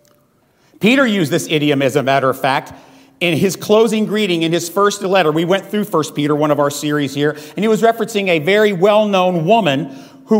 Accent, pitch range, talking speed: American, 140-185 Hz, 210 wpm